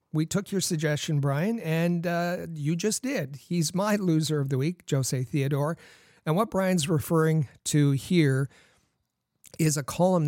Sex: male